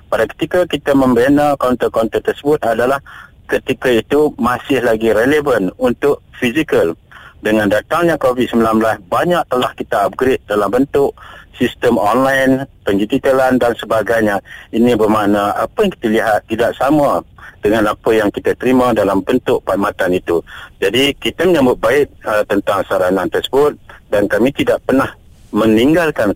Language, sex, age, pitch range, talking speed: Malay, male, 50-69, 105-135 Hz, 130 wpm